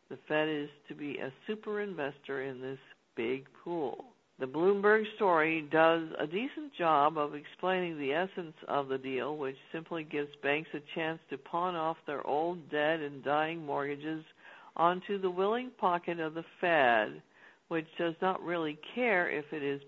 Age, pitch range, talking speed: 60-79, 150-200 Hz, 170 wpm